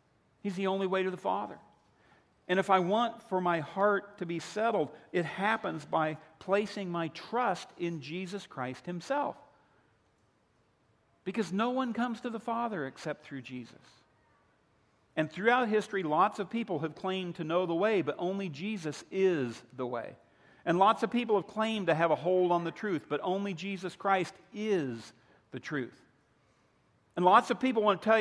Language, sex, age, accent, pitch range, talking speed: English, male, 50-69, American, 150-210 Hz, 175 wpm